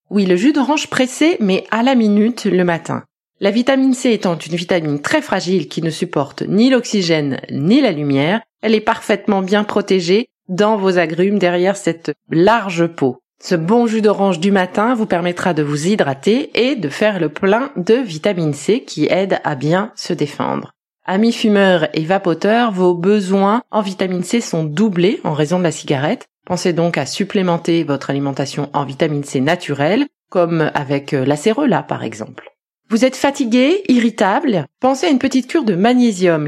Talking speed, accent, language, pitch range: 175 wpm, French, French, 165-220 Hz